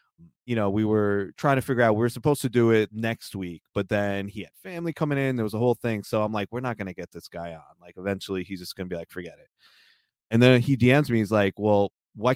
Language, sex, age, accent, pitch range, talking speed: English, male, 20-39, American, 95-130 Hz, 275 wpm